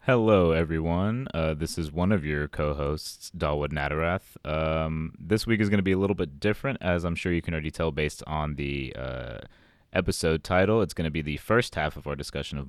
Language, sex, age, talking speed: English, male, 20-39, 220 wpm